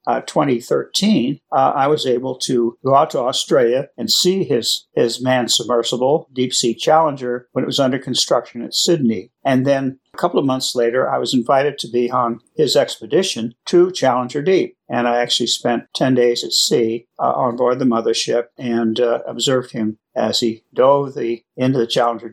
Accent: American